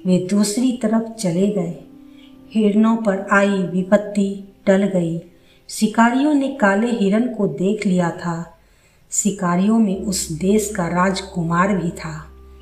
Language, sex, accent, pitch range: Hindi, female, native, 180-225 Hz